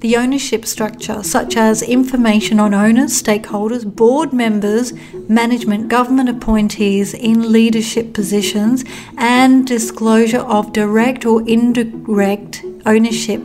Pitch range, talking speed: 210-245 Hz, 105 wpm